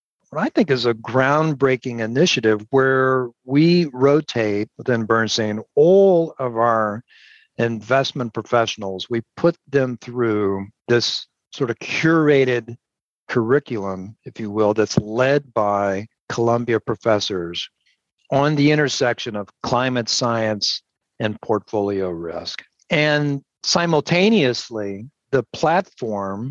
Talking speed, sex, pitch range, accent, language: 105 wpm, male, 110-135 Hz, American, English